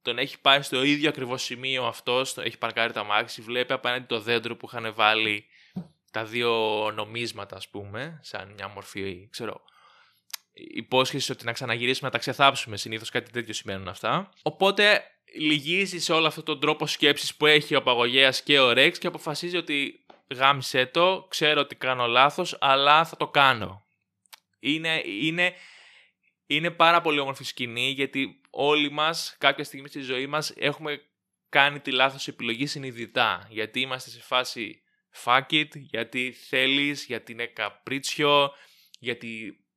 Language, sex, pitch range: Greek, male, 120-150 Hz